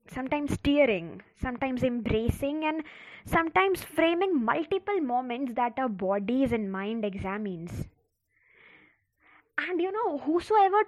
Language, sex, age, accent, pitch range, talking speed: English, female, 20-39, Indian, 220-310 Hz, 105 wpm